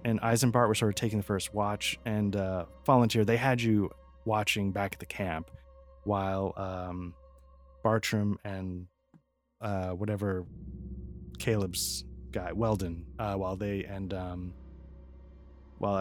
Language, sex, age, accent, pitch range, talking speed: English, male, 20-39, American, 90-110 Hz, 130 wpm